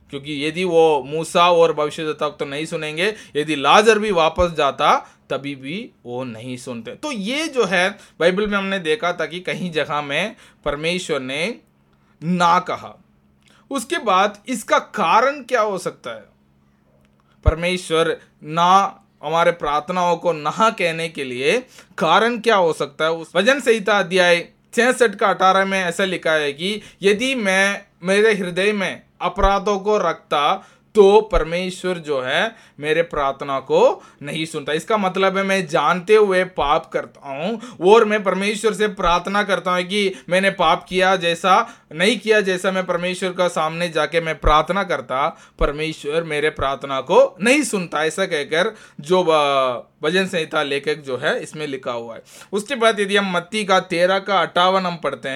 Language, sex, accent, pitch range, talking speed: Hindi, male, native, 155-205 Hz, 160 wpm